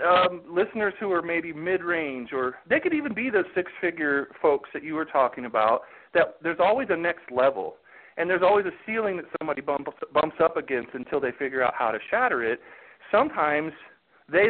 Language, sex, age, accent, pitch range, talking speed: English, male, 40-59, American, 145-190 Hz, 190 wpm